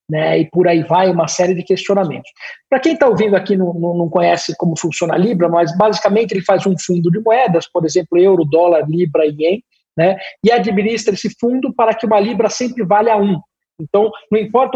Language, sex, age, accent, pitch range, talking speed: Portuguese, male, 50-69, Brazilian, 170-215 Hz, 205 wpm